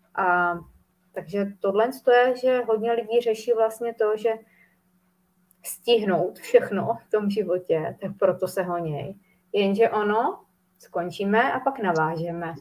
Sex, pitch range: female, 185-220 Hz